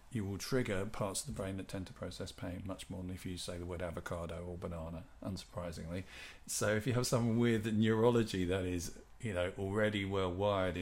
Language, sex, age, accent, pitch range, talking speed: English, male, 40-59, British, 90-110 Hz, 210 wpm